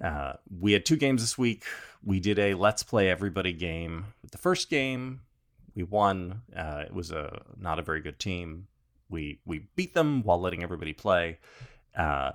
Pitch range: 90-130 Hz